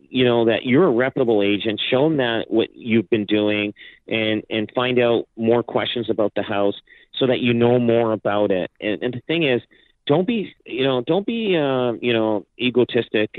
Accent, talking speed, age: American, 200 wpm, 40-59